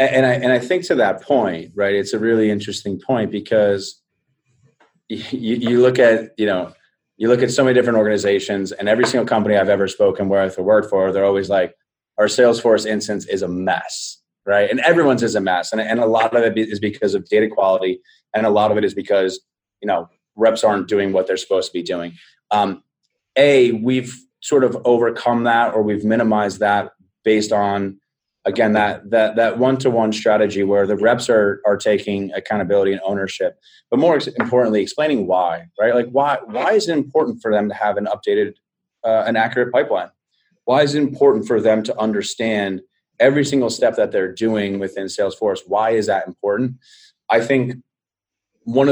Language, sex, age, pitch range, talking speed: English, male, 30-49, 100-125 Hz, 195 wpm